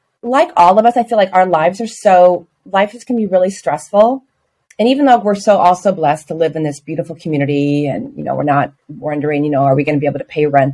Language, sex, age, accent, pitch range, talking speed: English, female, 30-49, American, 160-215 Hz, 265 wpm